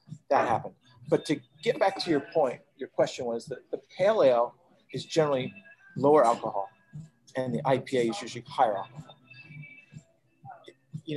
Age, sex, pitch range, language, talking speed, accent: 40-59, male, 125-150 Hz, English, 150 wpm, American